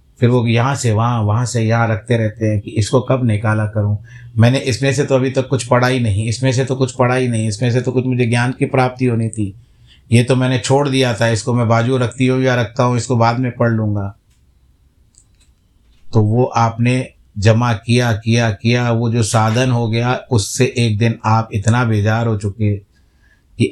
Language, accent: Hindi, native